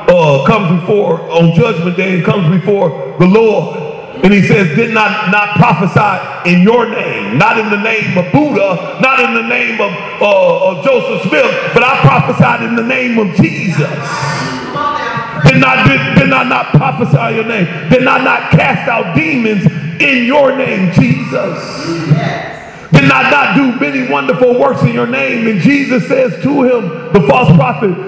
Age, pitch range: 40-59, 180-260 Hz